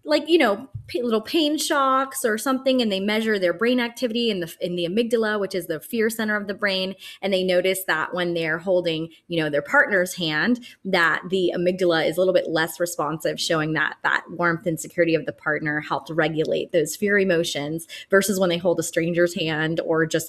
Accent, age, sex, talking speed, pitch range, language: American, 20-39, female, 210 wpm, 170-235 Hz, English